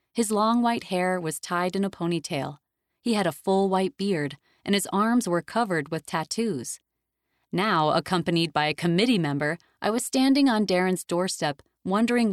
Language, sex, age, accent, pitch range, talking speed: English, female, 30-49, American, 170-225 Hz, 170 wpm